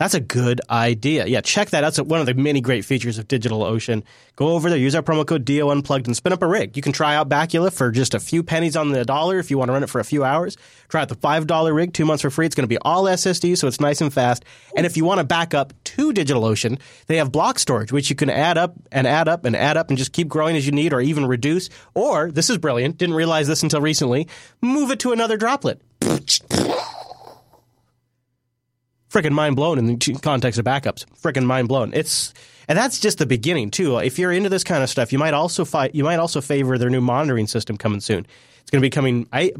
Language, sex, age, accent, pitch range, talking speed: English, male, 30-49, American, 125-160 Hz, 255 wpm